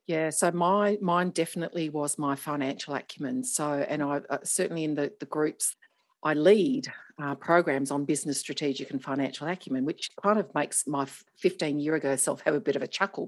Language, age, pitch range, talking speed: English, 50-69, 135-170 Hz, 195 wpm